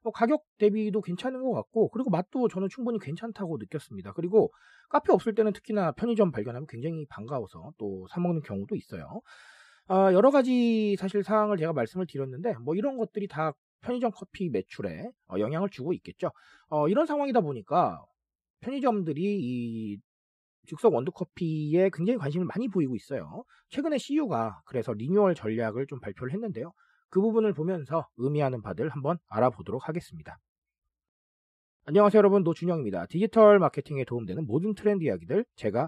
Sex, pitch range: male, 135-210 Hz